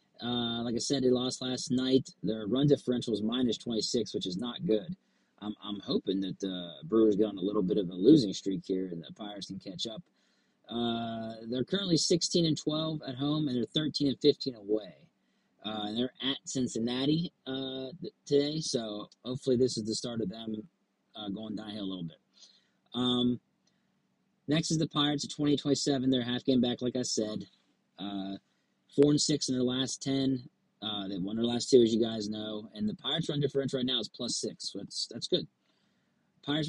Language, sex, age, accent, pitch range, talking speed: English, male, 30-49, American, 110-145 Hz, 200 wpm